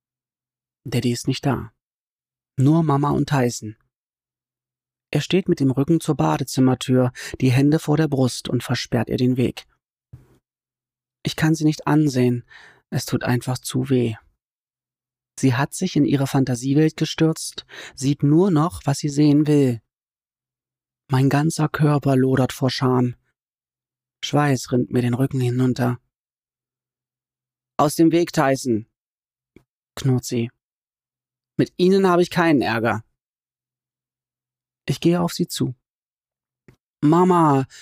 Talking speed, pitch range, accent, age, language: 125 wpm, 125-150 Hz, German, 30-49, German